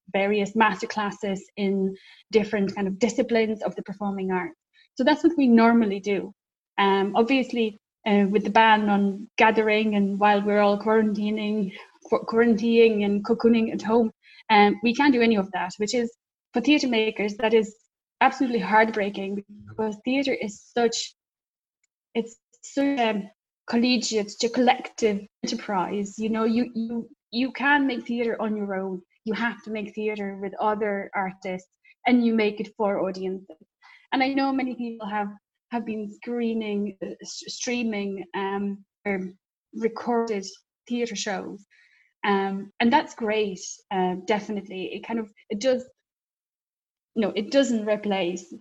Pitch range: 200-235 Hz